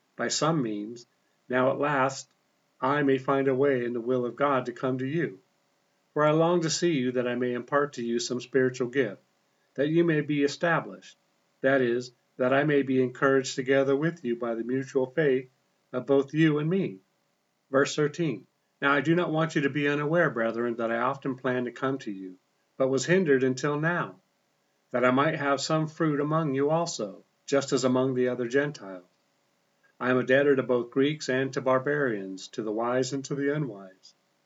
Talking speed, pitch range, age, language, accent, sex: 200 wpm, 125-145 Hz, 50-69, English, American, male